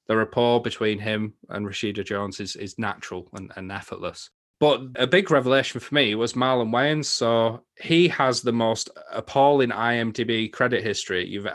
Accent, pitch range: British, 105-125 Hz